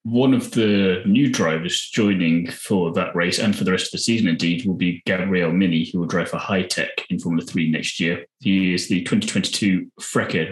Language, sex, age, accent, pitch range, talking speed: English, male, 20-39, British, 85-100 Hz, 205 wpm